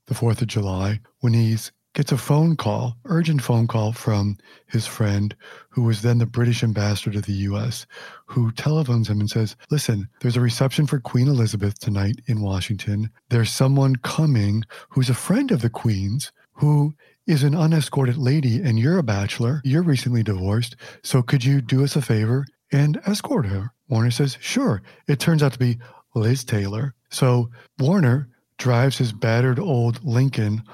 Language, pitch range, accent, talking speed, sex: English, 110-135 Hz, American, 170 wpm, male